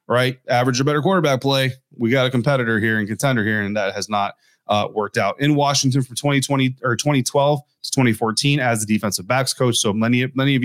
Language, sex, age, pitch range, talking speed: English, male, 30-49, 115-140 Hz, 215 wpm